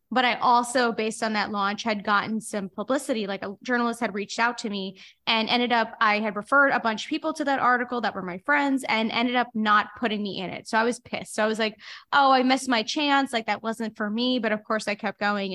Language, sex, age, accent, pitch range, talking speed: English, female, 10-29, American, 205-245 Hz, 265 wpm